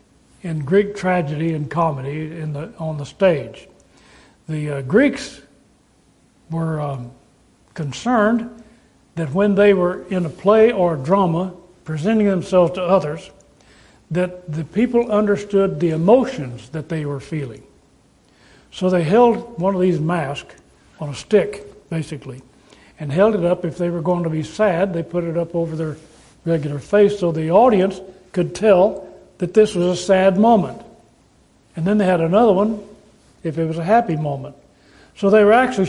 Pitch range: 165-210 Hz